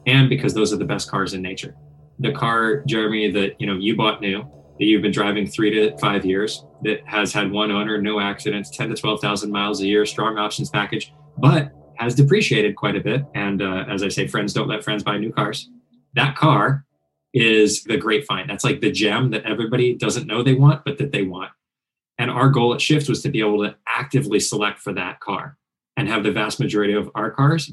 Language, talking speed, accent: English, 225 wpm, American